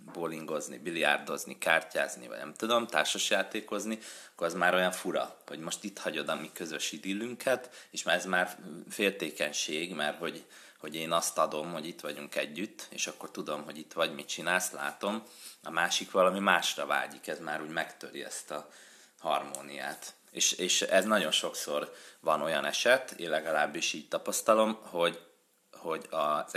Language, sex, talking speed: Hungarian, male, 160 wpm